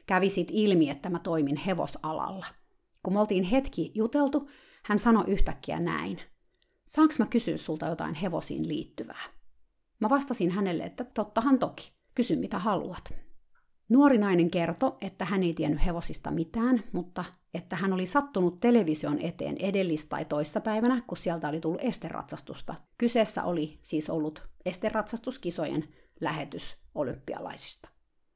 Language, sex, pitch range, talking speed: Finnish, female, 180-250 Hz, 130 wpm